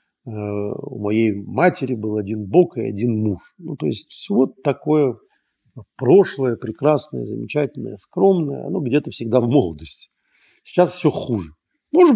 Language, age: Russian, 50-69